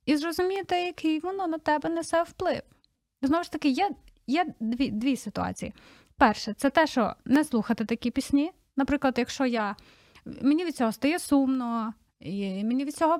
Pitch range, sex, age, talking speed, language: 240-305 Hz, female, 20-39, 165 wpm, Ukrainian